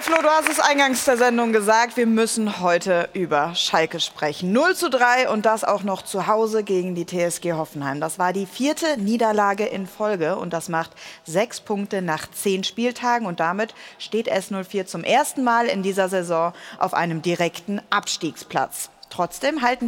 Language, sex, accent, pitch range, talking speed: German, female, German, 185-245 Hz, 170 wpm